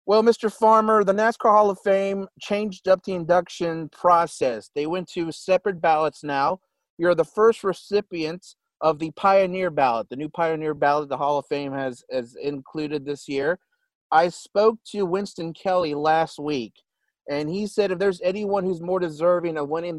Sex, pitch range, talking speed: male, 145-190 Hz, 175 wpm